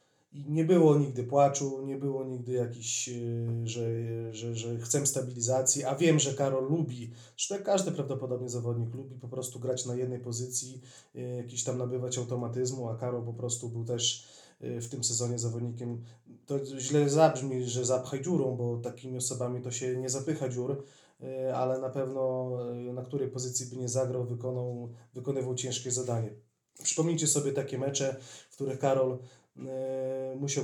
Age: 30-49